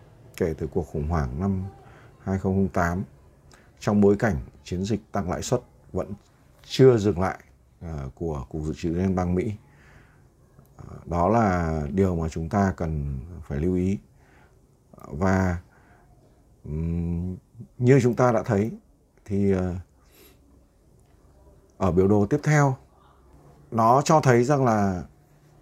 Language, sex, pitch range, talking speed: Vietnamese, male, 80-115 Hz, 135 wpm